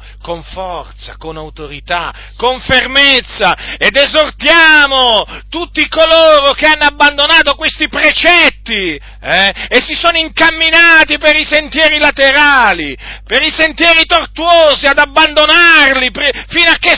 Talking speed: 115 wpm